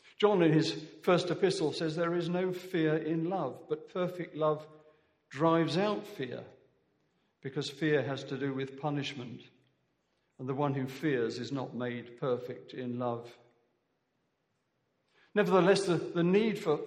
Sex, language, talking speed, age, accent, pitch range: male, English, 145 wpm, 50-69, British, 145-180 Hz